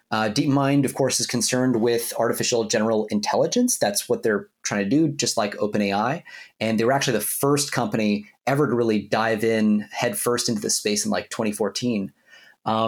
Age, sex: 30-49, male